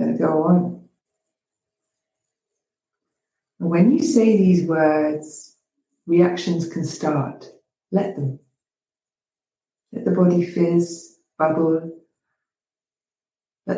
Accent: British